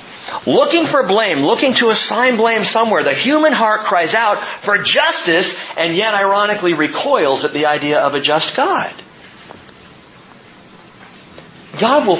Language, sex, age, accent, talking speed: English, male, 40-59, American, 140 wpm